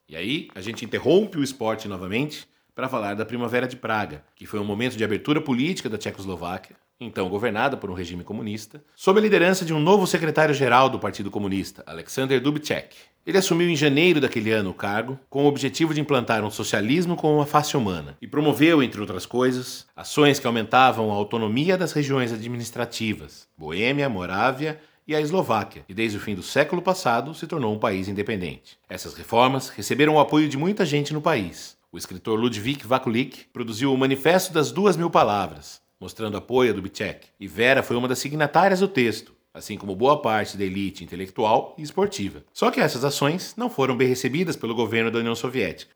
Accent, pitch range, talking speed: Brazilian, 105-150 Hz, 190 wpm